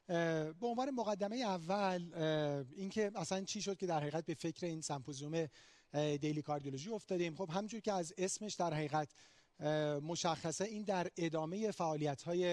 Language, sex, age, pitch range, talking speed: Persian, male, 40-59, 150-190 Hz, 150 wpm